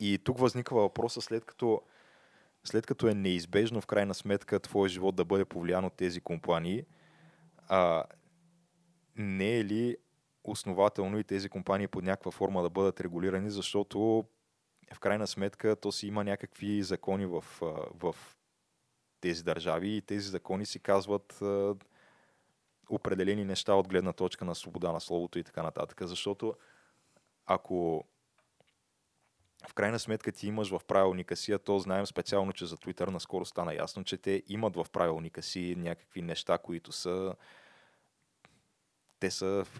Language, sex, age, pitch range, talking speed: Bulgarian, male, 20-39, 95-105 Hz, 150 wpm